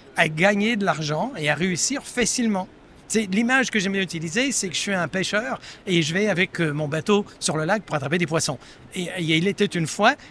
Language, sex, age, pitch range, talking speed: French, male, 60-79, 165-220 Hz, 215 wpm